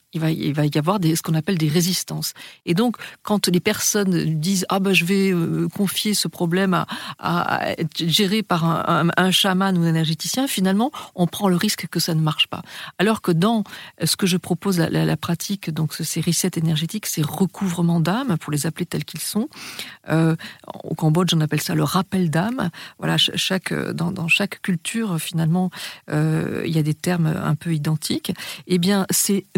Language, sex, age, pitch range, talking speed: French, female, 50-69, 165-200 Hz, 190 wpm